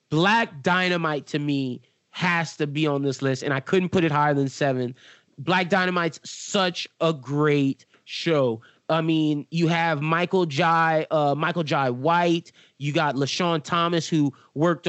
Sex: male